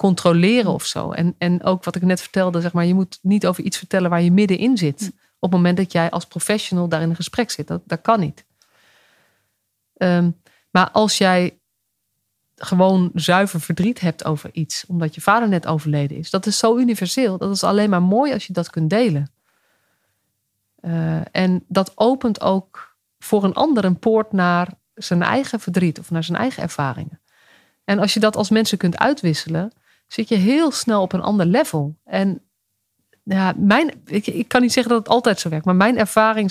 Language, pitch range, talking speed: Dutch, 175-215 Hz, 195 wpm